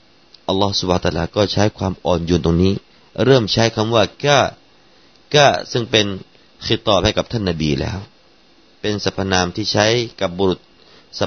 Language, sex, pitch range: Thai, male, 85-105 Hz